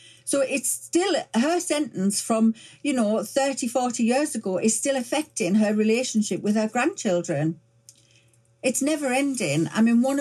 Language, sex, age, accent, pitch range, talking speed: English, female, 50-69, British, 175-220 Hz, 155 wpm